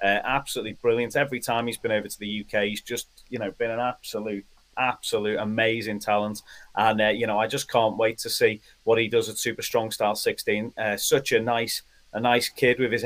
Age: 30-49